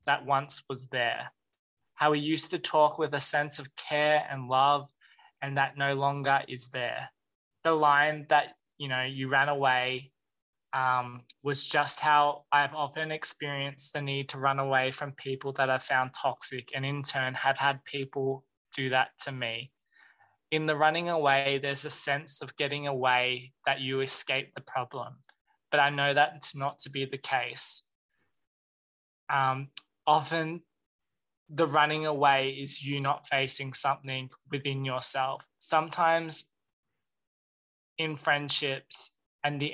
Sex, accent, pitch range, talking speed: male, Australian, 135-150 Hz, 150 wpm